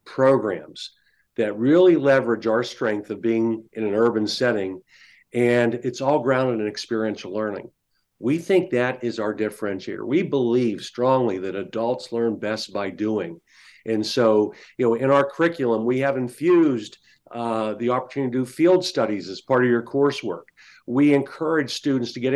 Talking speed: 165 wpm